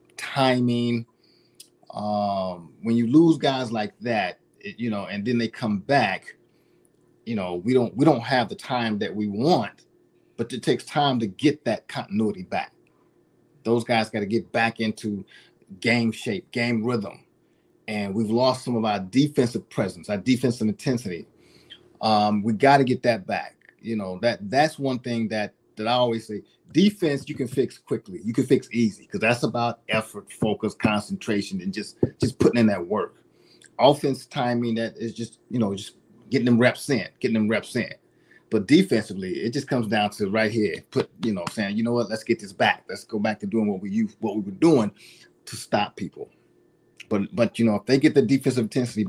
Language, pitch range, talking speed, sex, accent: English, 105-130 Hz, 195 wpm, male, American